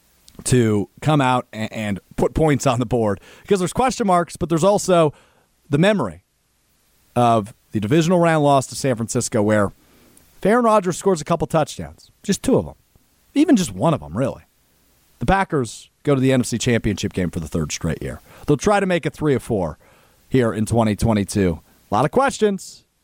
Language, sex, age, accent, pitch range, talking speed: English, male, 40-59, American, 110-180 Hz, 185 wpm